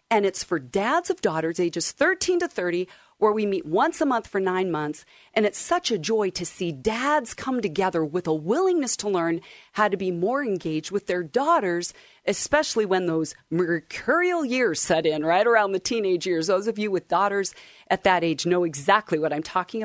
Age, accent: 40-59, American